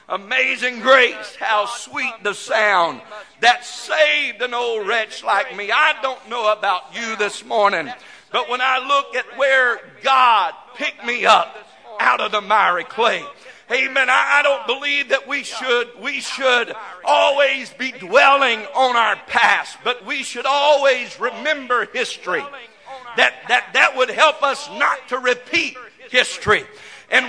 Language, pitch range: English, 235-290 Hz